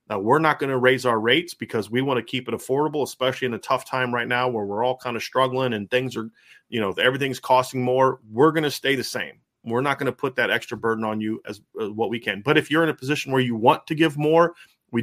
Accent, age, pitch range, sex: American, 30-49, 110-130 Hz, male